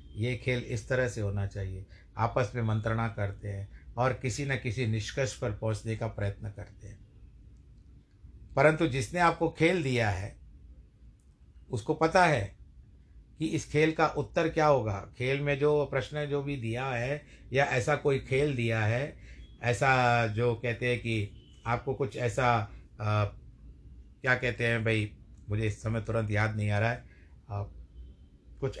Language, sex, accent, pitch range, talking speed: Hindi, male, native, 105-135 Hz, 160 wpm